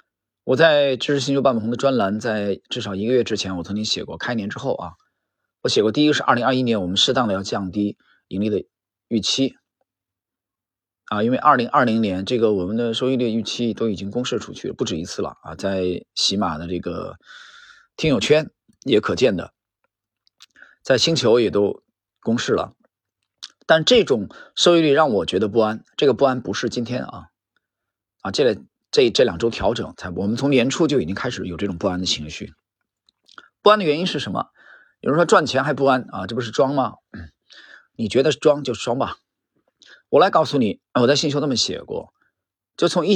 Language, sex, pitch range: Chinese, male, 100-140 Hz